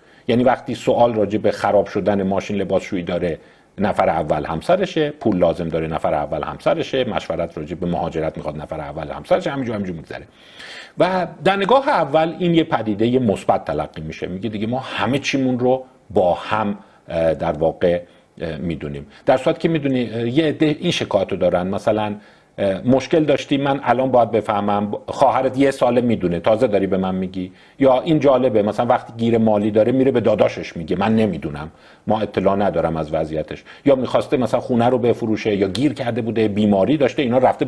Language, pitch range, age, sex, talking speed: Persian, 105-150 Hz, 50-69, male, 170 wpm